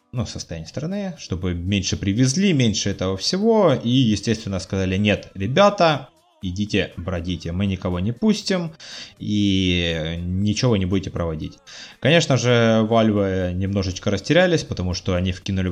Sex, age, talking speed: male, 20-39, 135 wpm